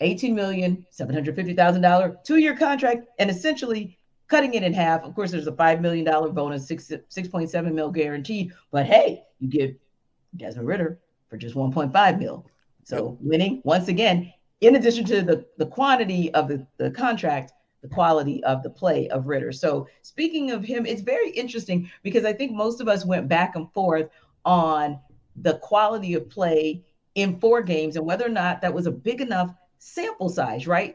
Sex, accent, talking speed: female, American, 165 wpm